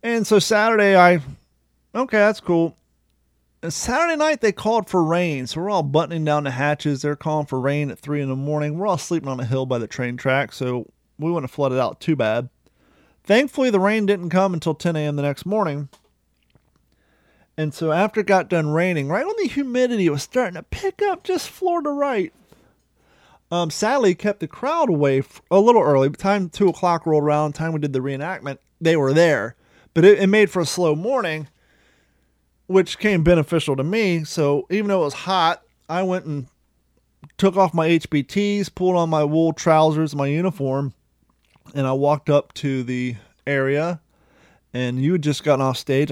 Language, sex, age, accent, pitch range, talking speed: English, male, 30-49, American, 140-190 Hz, 195 wpm